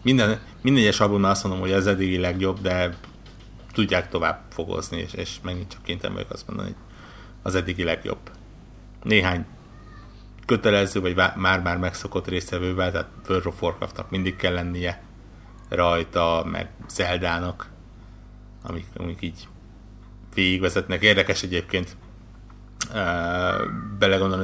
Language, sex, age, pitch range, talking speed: Hungarian, male, 60-79, 90-105 Hz, 115 wpm